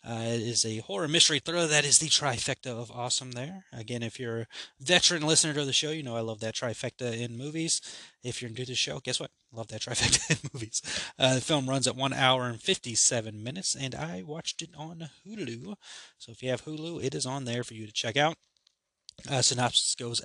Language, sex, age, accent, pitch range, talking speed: English, male, 20-39, American, 115-155 Hz, 230 wpm